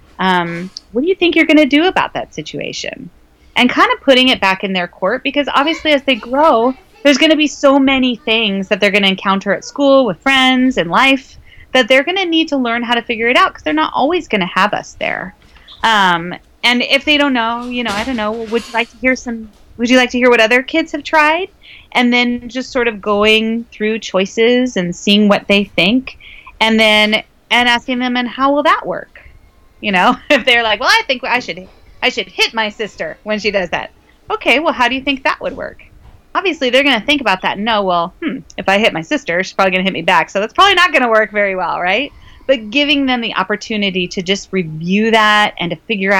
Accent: American